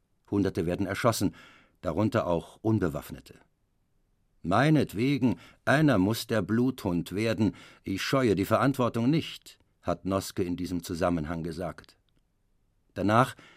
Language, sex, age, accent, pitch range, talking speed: German, male, 50-69, German, 90-110 Hz, 105 wpm